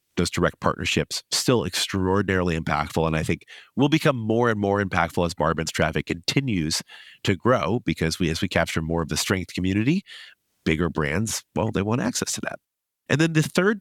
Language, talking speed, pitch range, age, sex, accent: English, 185 wpm, 85-110 Hz, 30-49, male, American